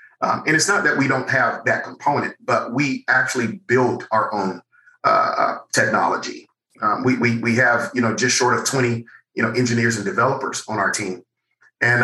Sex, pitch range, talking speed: male, 115-135 Hz, 190 wpm